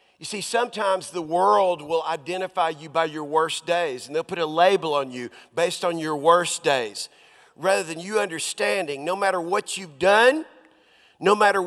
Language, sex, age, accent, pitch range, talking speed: English, male, 40-59, American, 175-225 Hz, 180 wpm